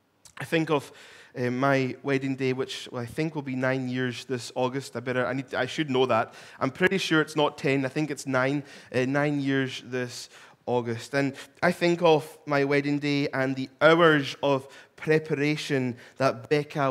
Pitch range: 130-155 Hz